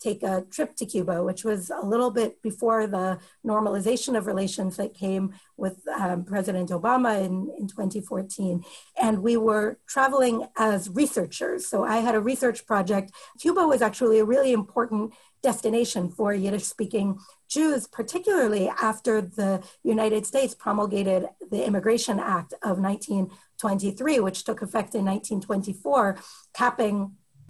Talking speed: 135 wpm